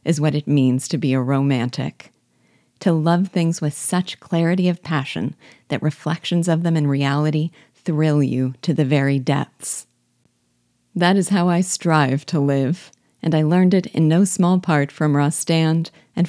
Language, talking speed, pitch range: English, 170 wpm, 140-170 Hz